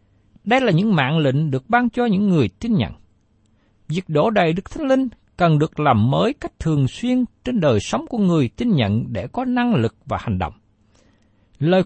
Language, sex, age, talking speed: Vietnamese, male, 60-79, 200 wpm